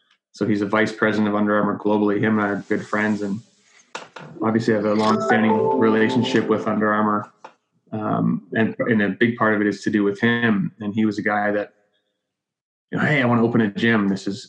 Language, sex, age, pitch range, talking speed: English, male, 20-39, 105-115 Hz, 220 wpm